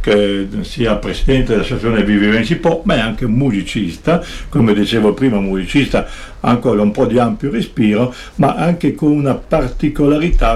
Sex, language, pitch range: male, Italian, 100-130 Hz